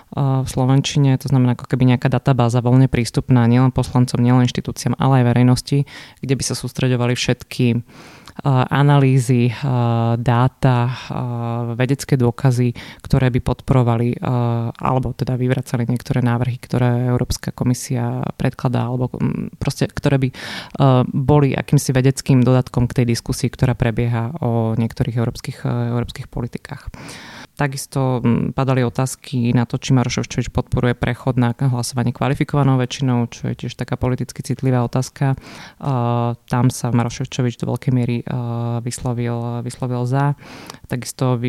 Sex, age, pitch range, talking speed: female, 20-39, 120-130 Hz, 125 wpm